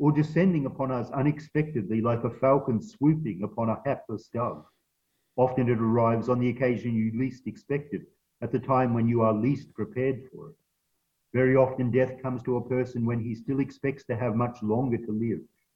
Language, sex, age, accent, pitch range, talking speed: English, male, 50-69, Australian, 110-140 Hz, 185 wpm